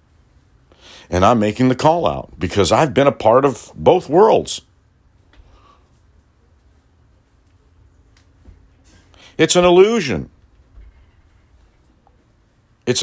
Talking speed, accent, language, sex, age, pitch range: 85 wpm, American, English, male, 60-79, 85-125 Hz